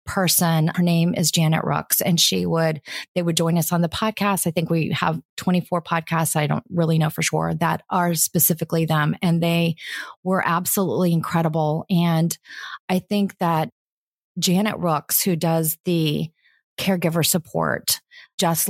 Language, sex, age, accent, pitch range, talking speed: English, female, 30-49, American, 165-190 Hz, 155 wpm